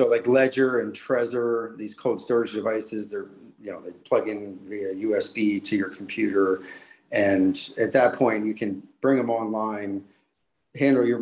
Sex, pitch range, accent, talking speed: male, 105-135 Hz, American, 165 wpm